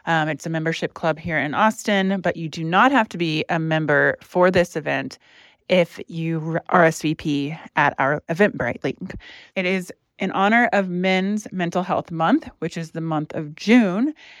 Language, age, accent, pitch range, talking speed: English, 30-49, American, 160-205 Hz, 175 wpm